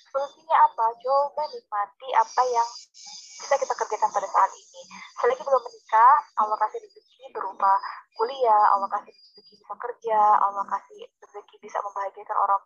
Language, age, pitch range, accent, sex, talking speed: Indonesian, 20-39, 200-270 Hz, native, female, 135 wpm